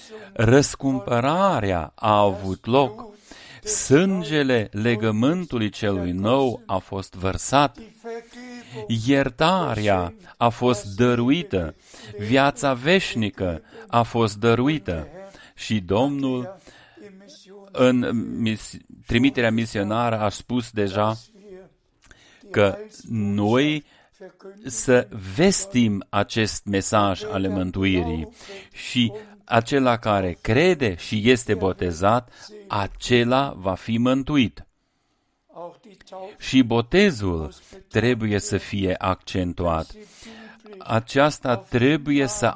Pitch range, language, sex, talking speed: 105-155 Hz, Romanian, male, 80 wpm